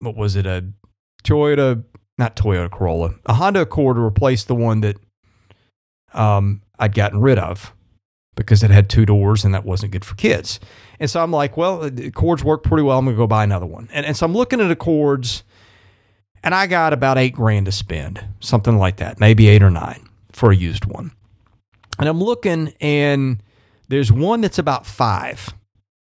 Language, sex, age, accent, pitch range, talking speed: English, male, 40-59, American, 100-135 Hz, 190 wpm